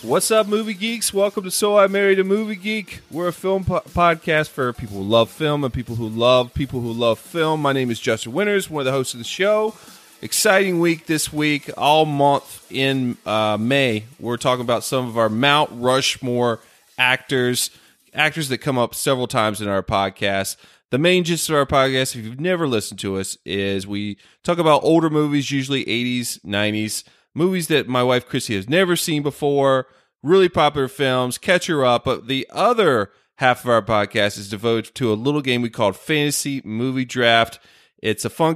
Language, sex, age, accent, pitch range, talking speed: English, male, 30-49, American, 115-155 Hz, 195 wpm